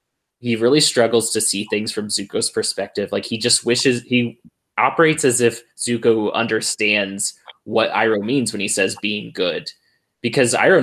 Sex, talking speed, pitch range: male, 160 wpm, 105-120 Hz